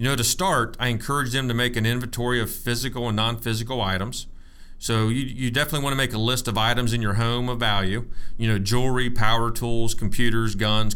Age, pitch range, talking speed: 40-59, 110-125 Hz, 210 wpm